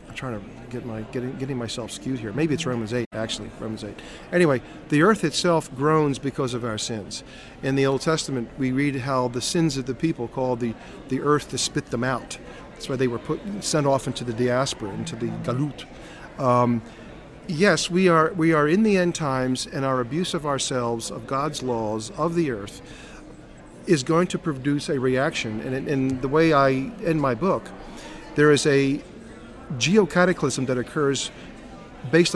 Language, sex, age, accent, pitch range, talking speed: English, male, 50-69, American, 125-160 Hz, 185 wpm